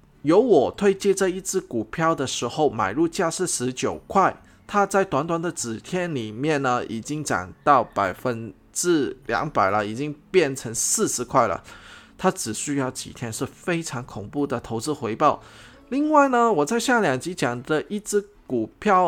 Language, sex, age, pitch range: Chinese, male, 20-39, 125-180 Hz